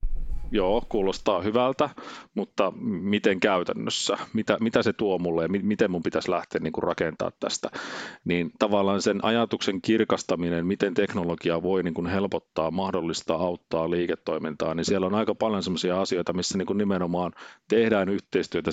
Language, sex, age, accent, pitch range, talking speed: Finnish, male, 40-59, native, 90-110 Hz, 145 wpm